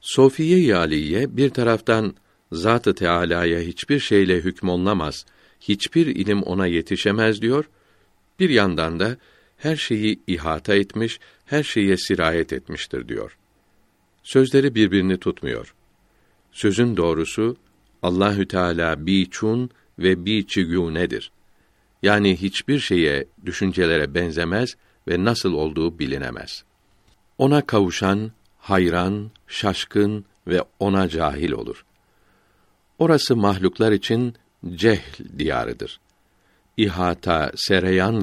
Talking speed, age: 95 wpm, 60-79